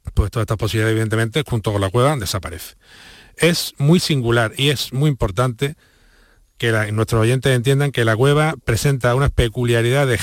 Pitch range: 110-135 Hz